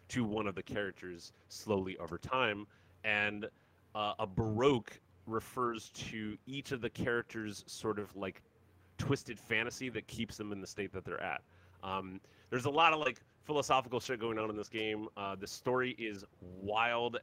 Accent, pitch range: American, 100-125 Hz